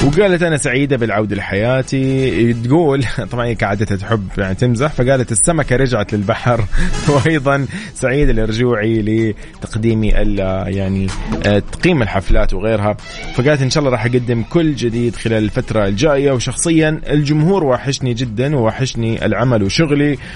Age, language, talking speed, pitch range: 20-39, Arabic, 125 wpm, 110-140 Hz